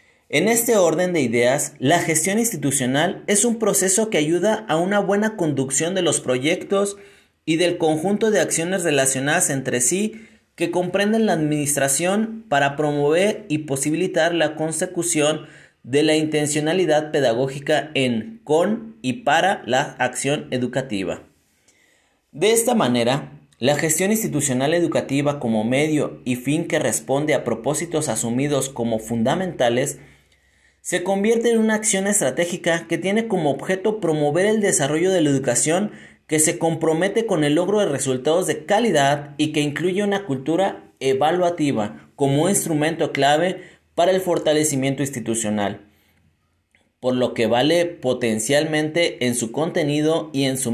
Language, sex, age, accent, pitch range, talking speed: Spanish, male, 40-59, Mexican, 130-180 Hz, 140 wpm